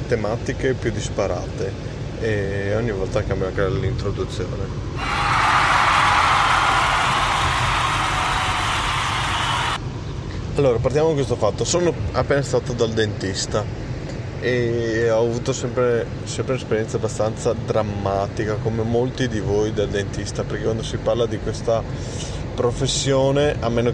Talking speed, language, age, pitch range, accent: 105 wpm, Italian, 30-49, 105-120 Hz, native